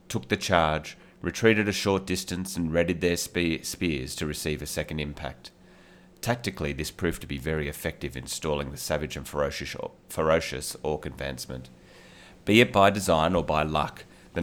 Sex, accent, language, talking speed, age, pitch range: male, Australian, English, 165 wpm, 30-49, 75-90 Hz